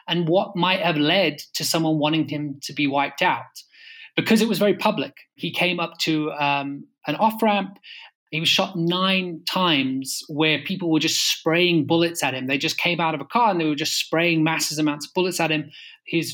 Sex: male